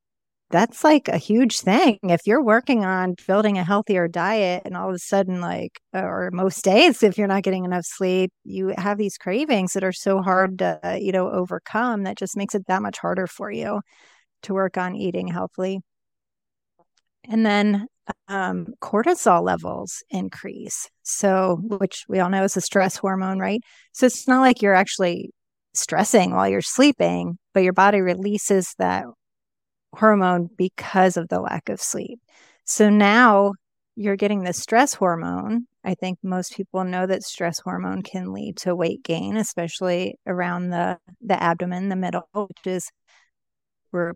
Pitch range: 180-210 Hz